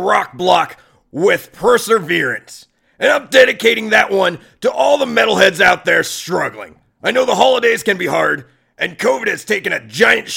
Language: English